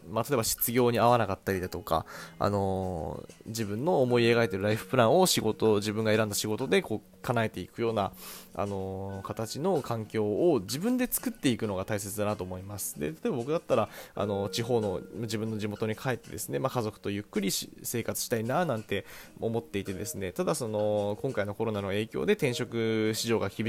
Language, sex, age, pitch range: Japanese, male, 20-39, 100-130 Hz